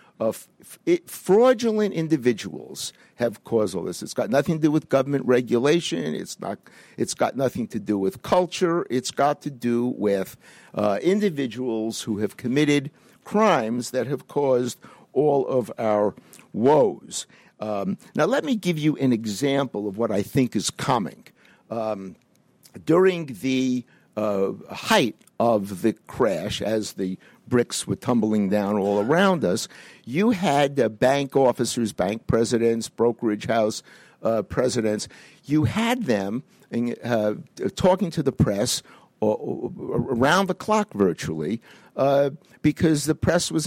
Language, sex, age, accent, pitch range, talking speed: English, male, 50-69, American, 115-170 Hz, 140 wpm